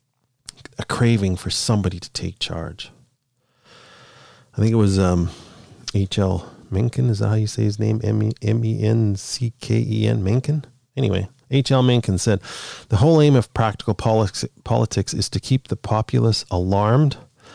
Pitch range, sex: 95-125 Hz, male